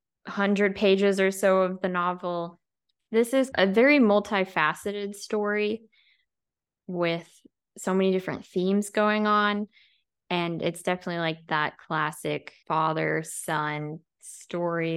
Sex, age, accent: female, 10-29, American